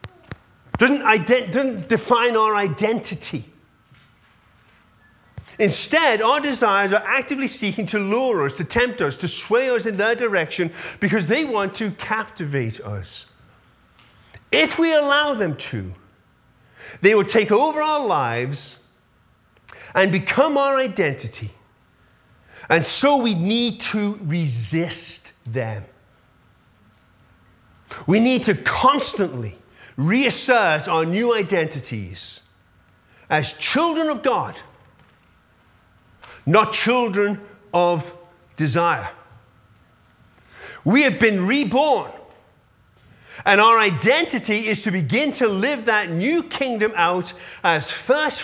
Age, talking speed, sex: 40-59, 110 wpm, male